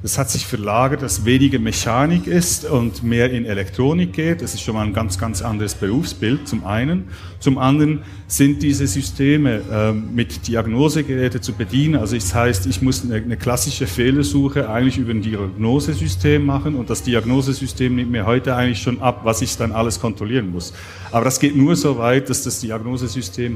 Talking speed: 180 wpm